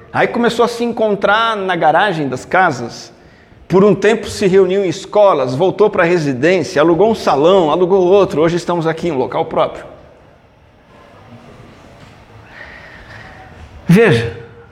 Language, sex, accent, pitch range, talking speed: Portuguese, male, Brazilian, 130-180 Hz, 135 wpm